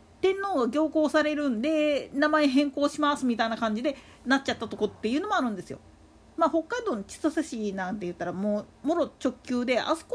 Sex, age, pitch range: female, 40-59, 215-330 Hz